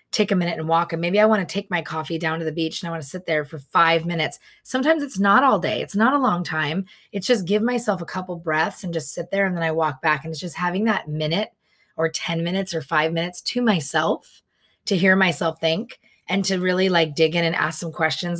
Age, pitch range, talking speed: 20-39, 165-195 Hz, 260 wpm